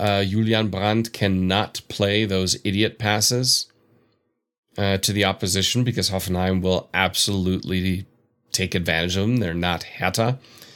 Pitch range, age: 100-120 Hz, 30-49